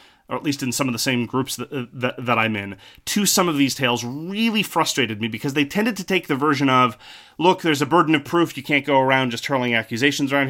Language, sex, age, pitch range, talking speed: English, male, 30-49, 120-145 Hz, 250 wpm